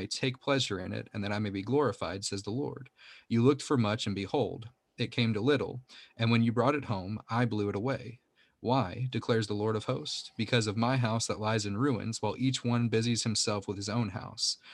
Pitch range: 105-125 Hz